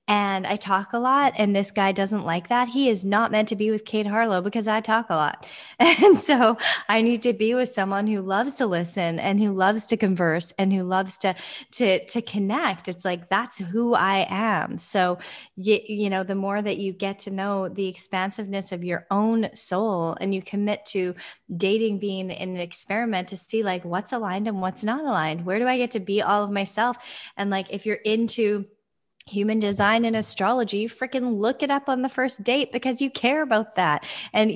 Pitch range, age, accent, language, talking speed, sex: 185-225 Hz, 20-39, American, English, 210 wpm, female